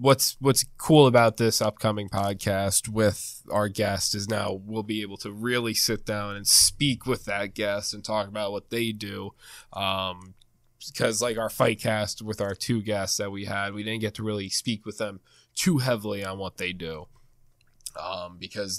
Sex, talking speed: male, 190 wpm